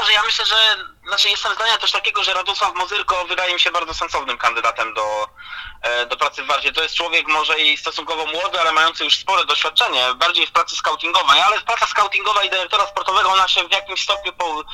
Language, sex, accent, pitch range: Polish, male, native, 130-175 Hz